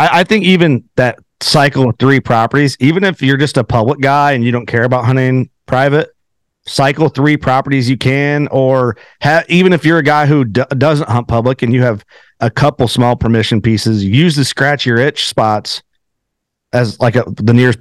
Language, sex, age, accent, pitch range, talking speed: English, male, 40-59, American, 120-140 Hz, 195 wpm